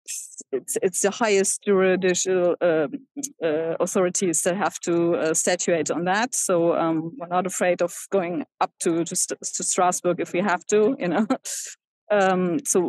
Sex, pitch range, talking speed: female, 180-210 Hz, 165 wpm